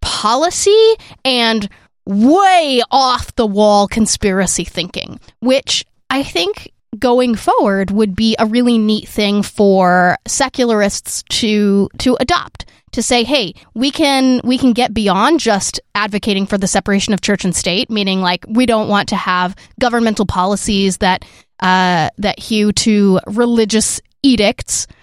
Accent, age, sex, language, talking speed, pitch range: American, 20-39, female, English, 140 wpm, 190-255 Hz